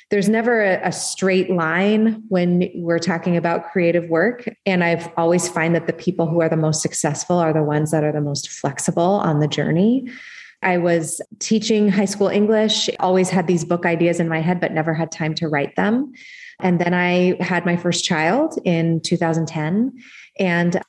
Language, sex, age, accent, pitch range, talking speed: English, female, 20-39, American, 160-195 Hz, 185 wpm